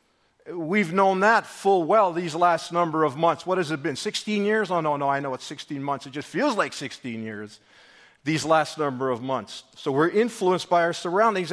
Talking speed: 215 wpm